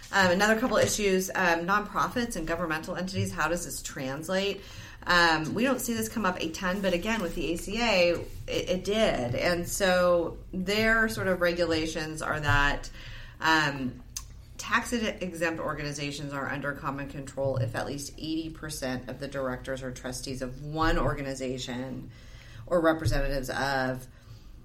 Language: English